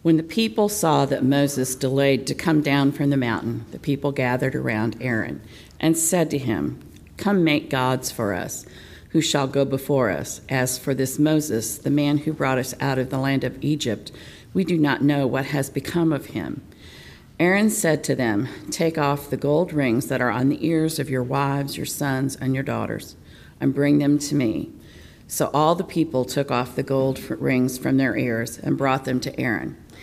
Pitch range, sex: 125-150 Hz, female